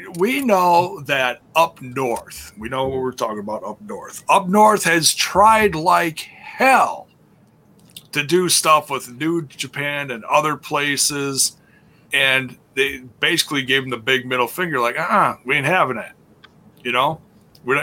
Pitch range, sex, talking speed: 135-195 Hz, male, 155 wpm